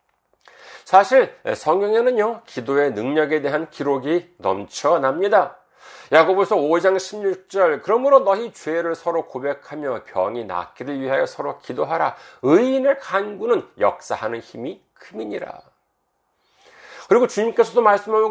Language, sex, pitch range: Korean, male, 175-265 Hz